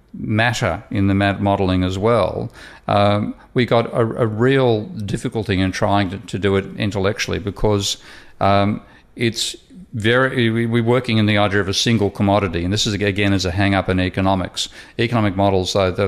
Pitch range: 95-110 Hz